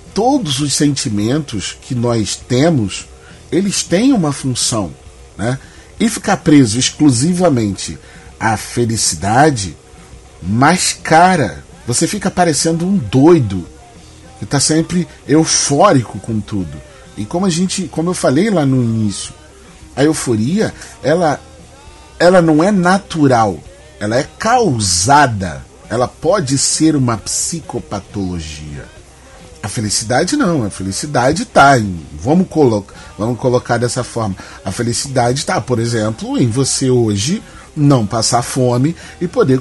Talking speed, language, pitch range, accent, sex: 120 wpm, Portuguese, 100-160 Hz, Brazilian, male